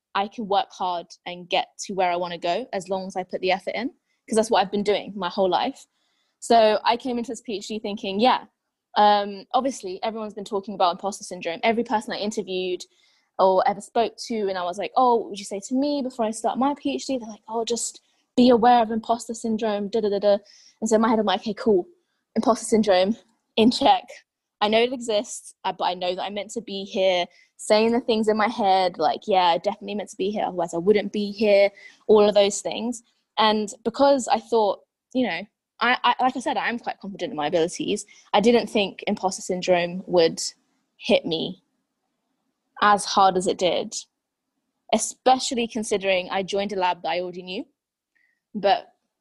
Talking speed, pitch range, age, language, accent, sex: 210 wpm, 190-240 Hz, 20-39, English, British, female